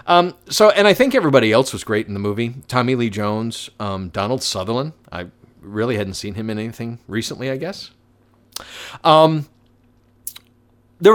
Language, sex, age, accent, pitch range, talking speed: English, male, 40-59, American, 110-150 Hz, 160 wpm